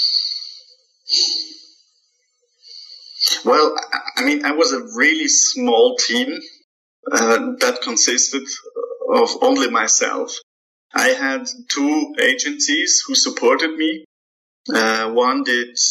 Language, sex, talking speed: English, male, 95 wpm